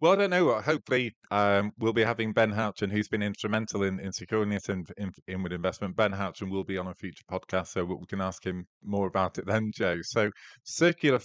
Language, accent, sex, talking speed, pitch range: English, British, male, 235 wpm, 95-105 Hz